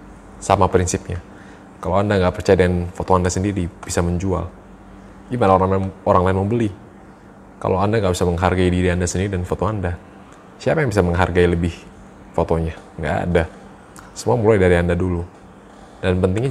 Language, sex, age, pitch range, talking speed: Indonesian, male, 20-39, 90-100 Hz, 155 wpm